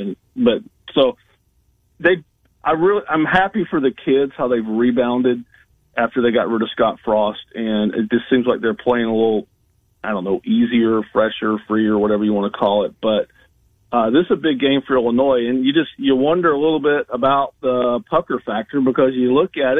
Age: 40-59